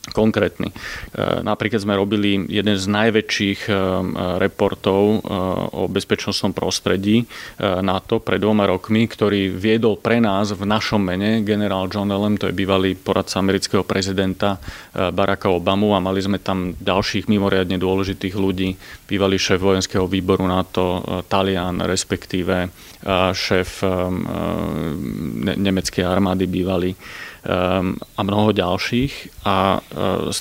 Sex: male